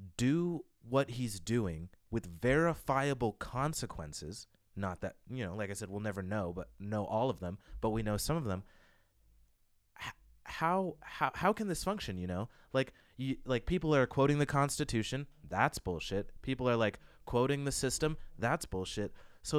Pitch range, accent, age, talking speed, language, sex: 95-135 Hz, American, 30-49, 170 wpm, English, male